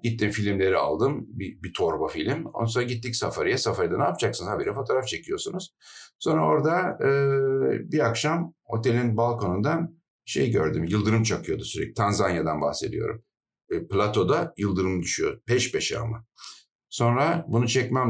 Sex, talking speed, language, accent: male, 135 wpm, Turkish, native